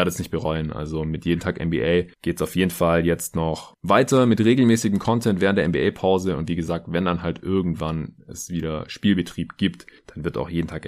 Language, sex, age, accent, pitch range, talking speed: German, male, 20-39, German, 85-115 Hz, 210 wpm